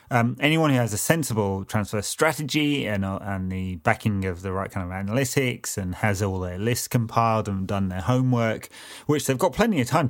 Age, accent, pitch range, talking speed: 30-49, British, 100-120 Hz, 210 wpm